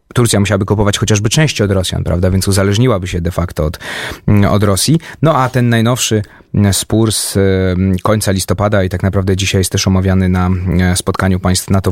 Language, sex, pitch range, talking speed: Polish, male, 95-110 Hz, 175 wpm